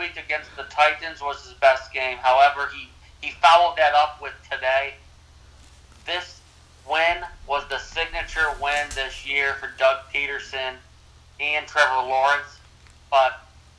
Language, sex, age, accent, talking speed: English, male, 40-59, American, 130 wpm